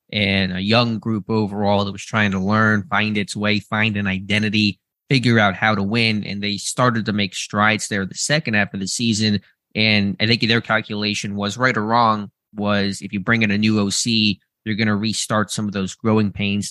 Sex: male